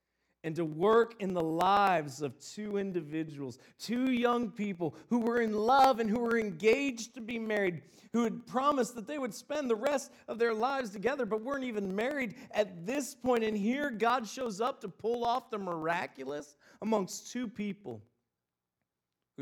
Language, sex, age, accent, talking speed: English, male, 40-59, American, 175 wpm